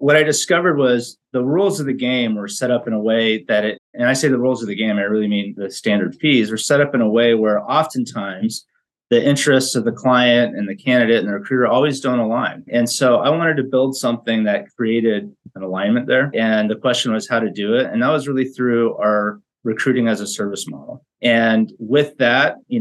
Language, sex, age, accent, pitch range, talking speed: English, male, 30-49, American, 115-130 Hz, 230 wpm